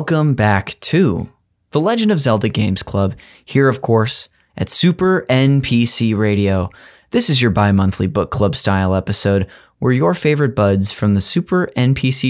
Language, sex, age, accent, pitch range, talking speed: English, male, 20-39, American, 100-130 Hz, 155 wpm